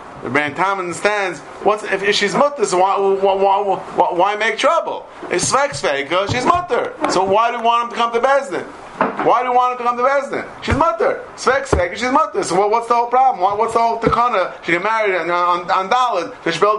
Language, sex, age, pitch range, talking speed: English, male, 30-49, 185-255 Hz, 220 wpm